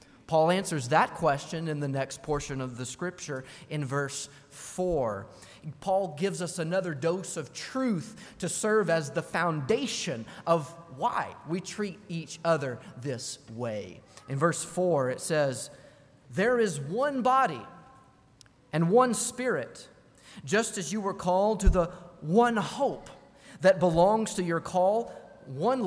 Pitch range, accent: 145-200 Hz, American